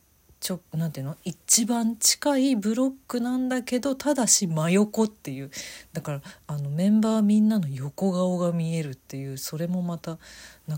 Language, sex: Japanese, female